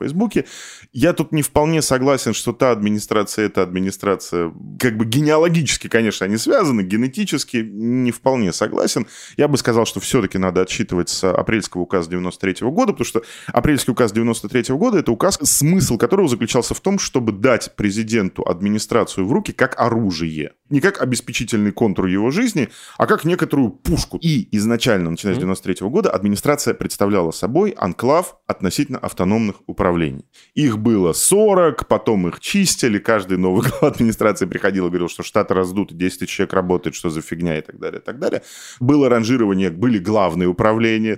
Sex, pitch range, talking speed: male, 95-130 Hz, 160 wpm